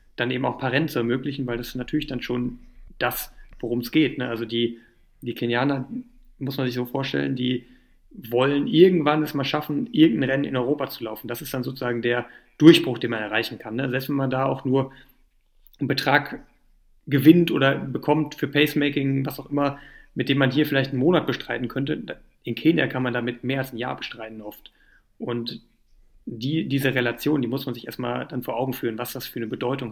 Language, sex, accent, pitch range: German, male, German, 120-140 Hz